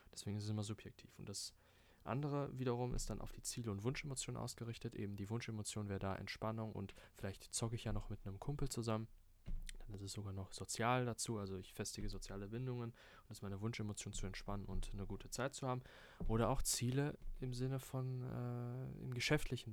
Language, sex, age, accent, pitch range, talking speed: German, male, 20-39, German, 100-125 Hz, 205 wpm